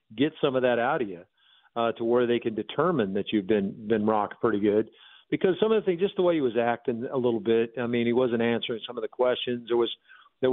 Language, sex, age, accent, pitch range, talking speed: English, male, 50-69, American, 120-140 Hz, 260 wpm